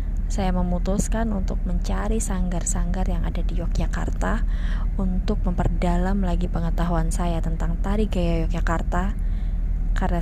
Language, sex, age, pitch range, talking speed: Indonesian, female, 20-39, 85-95 Hz, 110 wpm